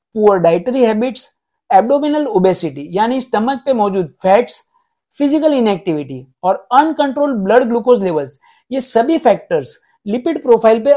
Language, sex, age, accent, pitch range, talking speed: Hindi, male, 50-69, native, 190-265 Hz, 80 wpm